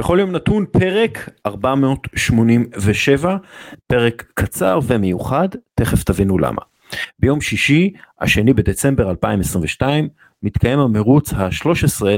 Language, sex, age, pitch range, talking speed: Hebrew, male, 40-59, 100-135 Hz, 100 wpm